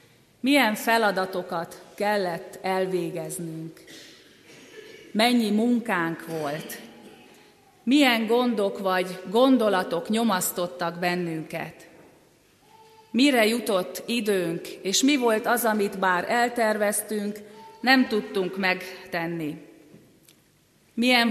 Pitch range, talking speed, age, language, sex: 185-230 Hz, 75 wpm, 30-49, Hungarian, female